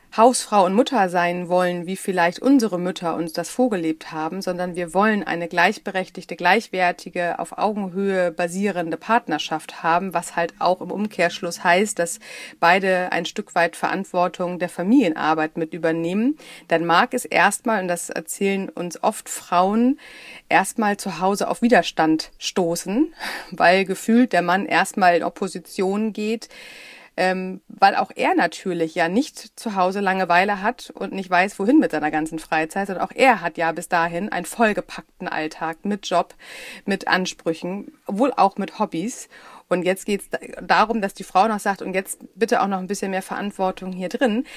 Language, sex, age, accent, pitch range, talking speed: German, female, 40-59, German, 175-220 Hz, 165 wpm